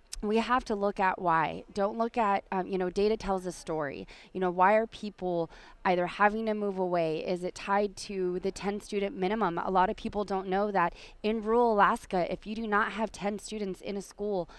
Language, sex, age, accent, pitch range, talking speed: English, female, 20-39, American, 185-215 Hz, 220 wpm